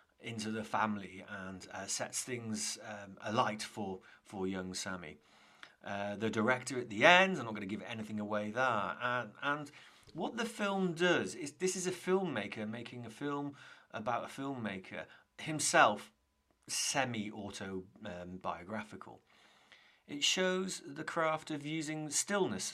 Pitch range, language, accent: 105-155 Hz, English, British